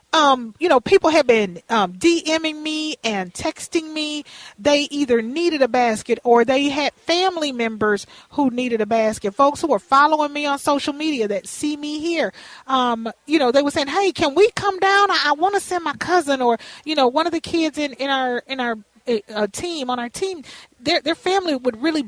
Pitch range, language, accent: 230-310 Hz, English, American